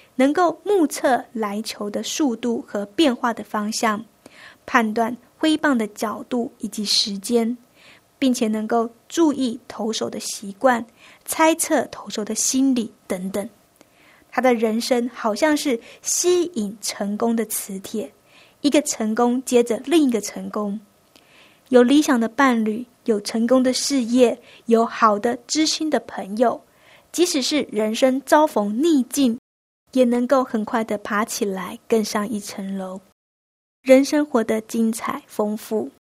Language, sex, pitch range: Chinese, female, 215-265 Hz